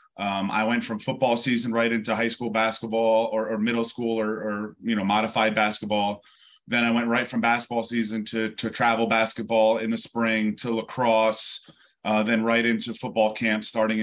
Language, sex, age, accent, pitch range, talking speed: English, male, 30-49, American, 105-115 Hz, 190 wpm